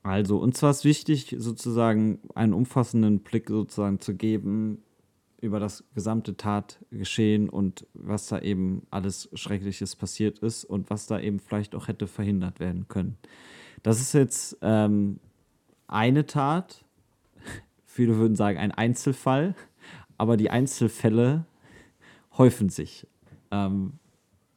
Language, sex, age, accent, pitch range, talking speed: German, male, 30-49, German, 95-115 Hz, 125 wpm